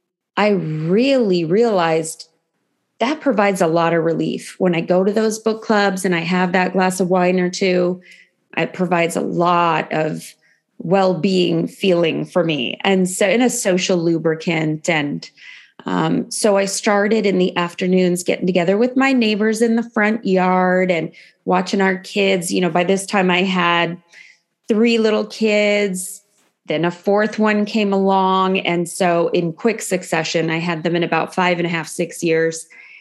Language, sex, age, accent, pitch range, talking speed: English, female, 20-39, American, 175-210 Hz, 170 wpm